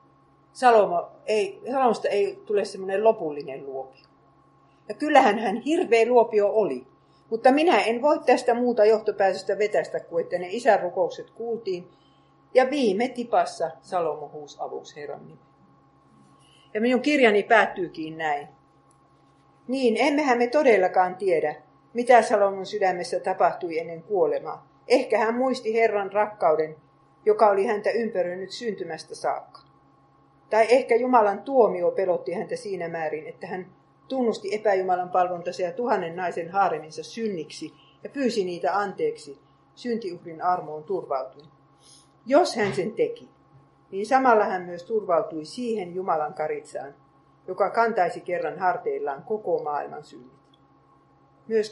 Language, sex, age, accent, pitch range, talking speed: Finnish, female, 50-69, native, 165-240 Hz, 125 wpm